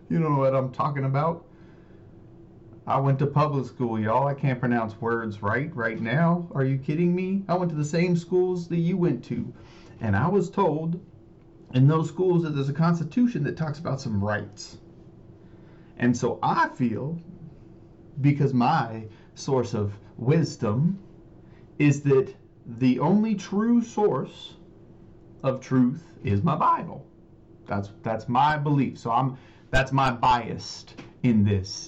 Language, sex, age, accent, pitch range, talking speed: English, male, 30-49, American, 115-165 Hz, 150 wpm